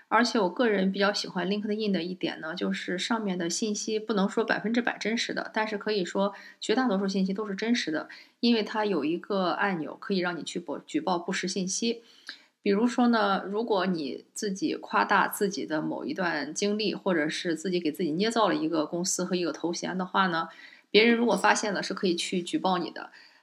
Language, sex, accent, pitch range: English, female, Chinese, 170-205 Hz